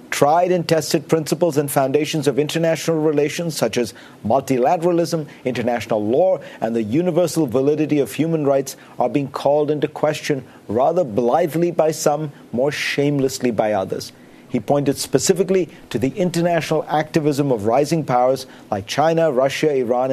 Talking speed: 145 wpm